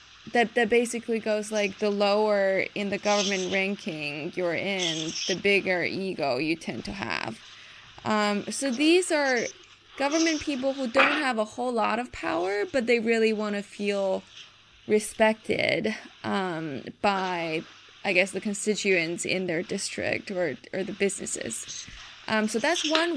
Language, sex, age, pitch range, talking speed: English, female, 20-39, 190-240 Hz, 150 wpm